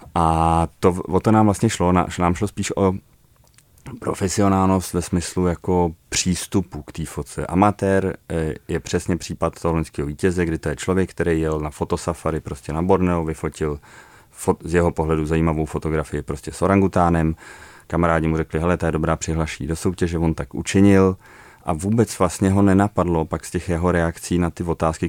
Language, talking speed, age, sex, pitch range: Czech, 170 wpm, 30-49, male, 80-90 Hz